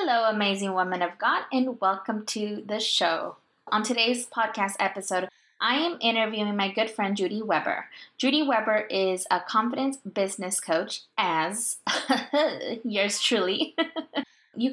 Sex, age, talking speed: female, 20-39, 135 wpm